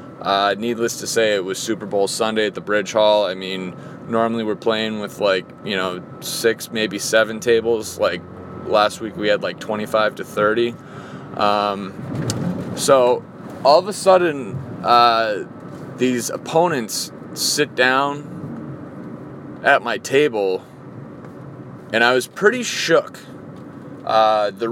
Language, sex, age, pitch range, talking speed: English, male, 20-39, 105-135 Hz, 135 wpm